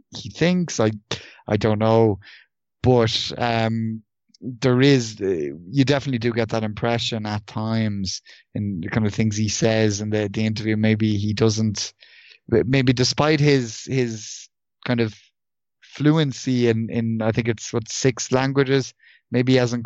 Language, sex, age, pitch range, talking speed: English, male, 20-39, 110-120 Hz, 150 wpm